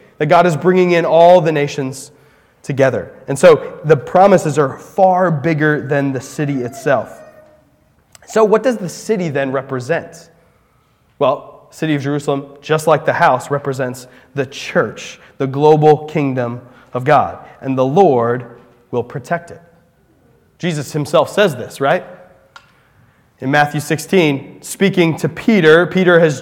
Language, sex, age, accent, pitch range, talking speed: English, male, 20-39, American, 145-185 Hz, 145 wpm